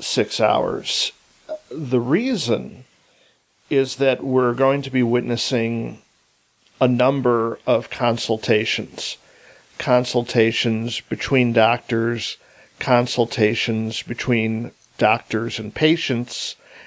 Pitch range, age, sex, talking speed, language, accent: 115-135 Hz, 50-69, male, 80 wpm, English, American